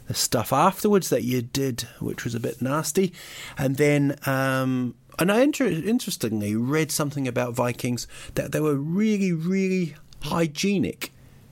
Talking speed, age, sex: 140 wpm, 40-59, male